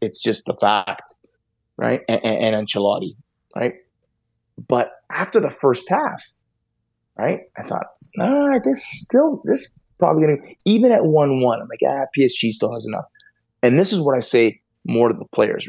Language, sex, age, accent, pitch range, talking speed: English, male, 30-49, American, 115-125 Hz, 170 wpm